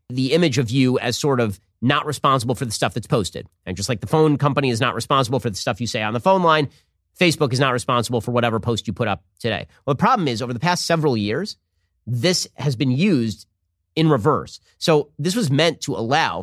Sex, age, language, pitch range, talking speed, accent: male, 30-49, English, 115-155 Hz, 235 wpm, American